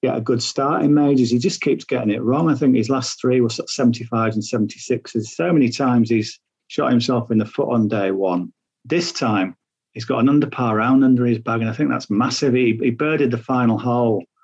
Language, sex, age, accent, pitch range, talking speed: English, male, 40-59, British, 115-140 Hz, 230 wpm